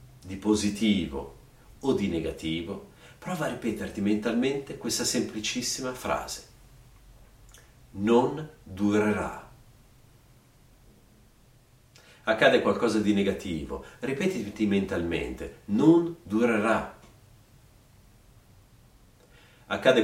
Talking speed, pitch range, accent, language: 70 wpm, 105-130 Hz, native, Italian